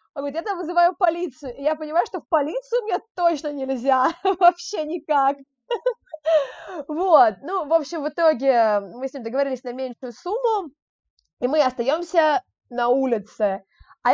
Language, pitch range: Russian, 240-315 Hz